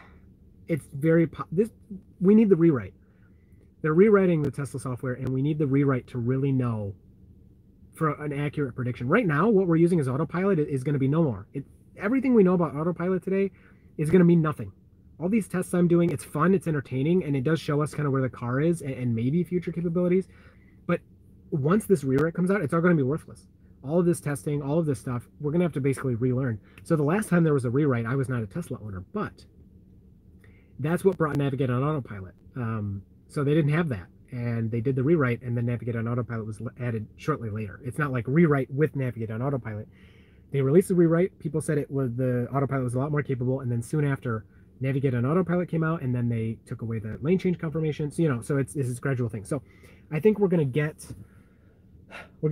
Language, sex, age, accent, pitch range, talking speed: English, male, 30-49, American, 115-165 Hz, 225 wpm